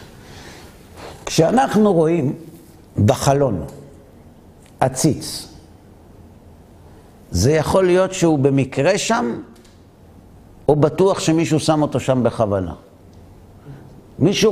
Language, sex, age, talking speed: Hebrew, male, 60-79, 75 wpm